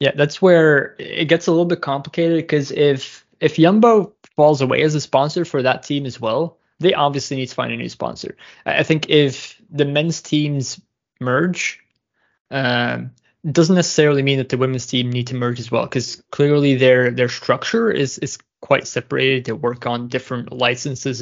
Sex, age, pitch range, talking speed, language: male, 20-39, 125-150 Hz, 185 wpm, English